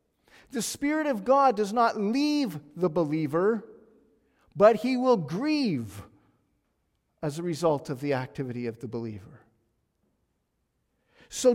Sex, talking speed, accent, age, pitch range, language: male, 120 wpm, American, 40-59, 200-265 Hz, English